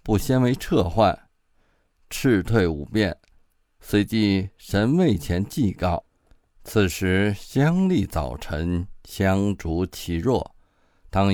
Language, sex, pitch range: Chinese, male, 90-105 Hz